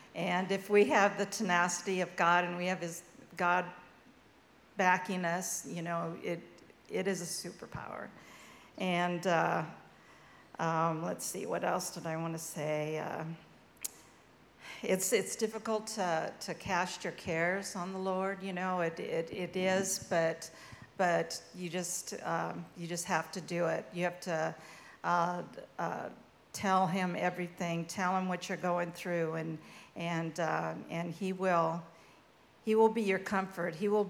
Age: 50-69